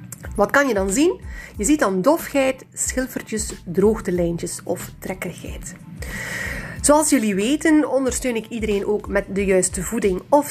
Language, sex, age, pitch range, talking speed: Dutch, female, 30-49, 185-255 Hz, 150 wpm